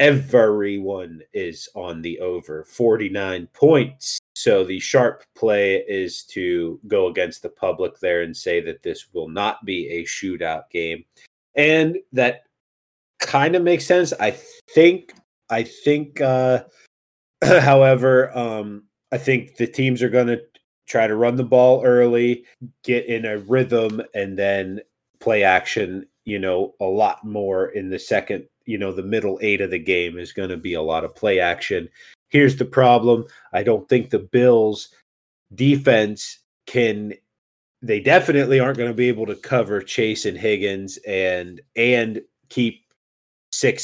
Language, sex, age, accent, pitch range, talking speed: English, male, 30-49, American, 100-145 Hz, 155 wpm